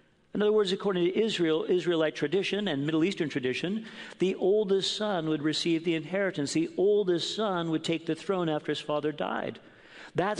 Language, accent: English, American